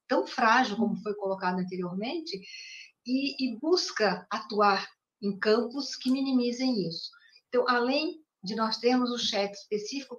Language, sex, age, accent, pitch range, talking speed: Portuguese, female, 50-69, Brazilian, 200-235 Hz, 135 wpm